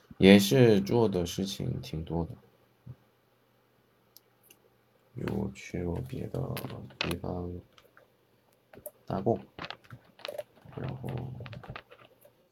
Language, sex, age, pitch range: Chinese, male, 50-69, 90-125 Hz